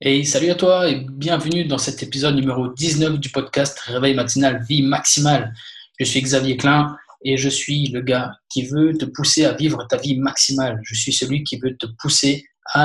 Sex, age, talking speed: male, 20-39, 195 wpm